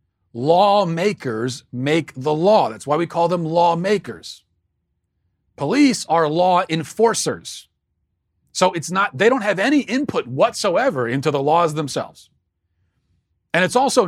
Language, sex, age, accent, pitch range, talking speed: English, male, 40-59, American, 120-170 Hz, 130 wpm